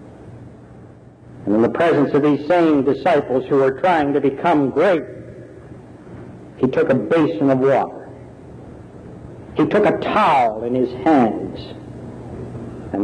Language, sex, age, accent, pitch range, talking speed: English, male, 60-79, American, 120-150 Hz, 130 wpm